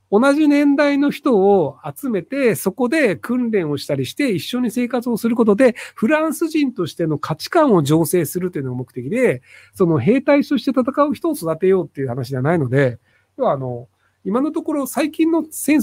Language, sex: Japanese, male